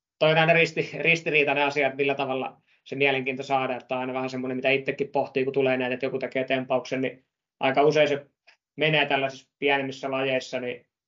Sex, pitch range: male, 130-140 Hz